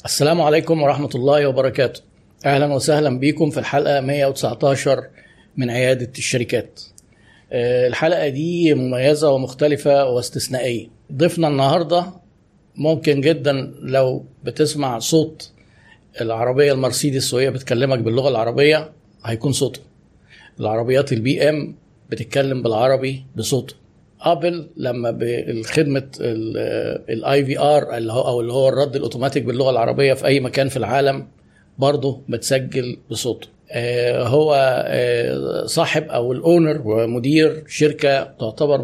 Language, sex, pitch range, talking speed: Arabic, male, 125-150 Hz, 110 wpm